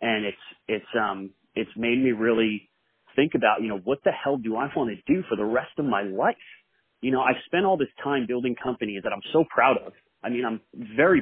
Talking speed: 240 wpm